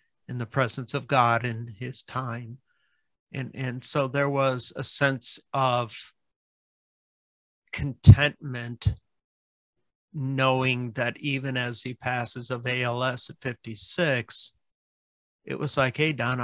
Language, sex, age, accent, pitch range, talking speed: English, male, 50-69, American, 115-135 Hz, 120 wpm